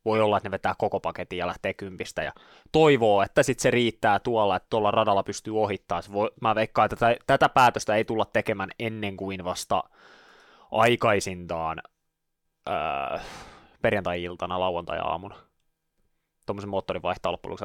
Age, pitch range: 20-39, 95-120 Hz